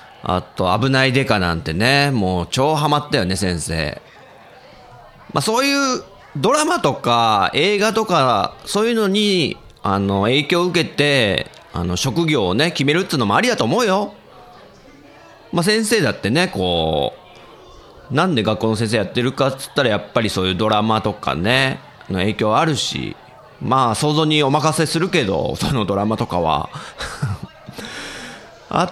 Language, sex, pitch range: Japanese, male, 100-165 Hz